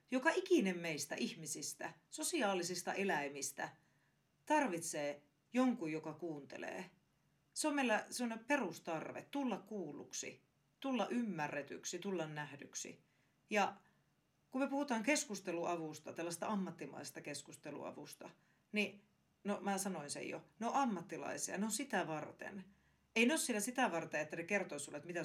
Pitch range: 160-220 Hz